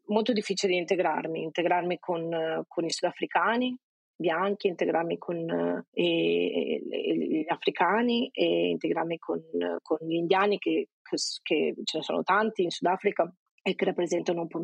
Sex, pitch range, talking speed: female, 170-195 Hz, 135 wpm